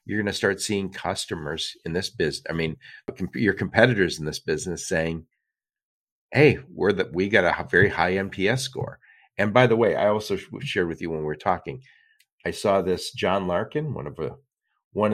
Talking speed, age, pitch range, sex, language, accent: 195 wpm, 50-69, 95-130 Hz, male, English, American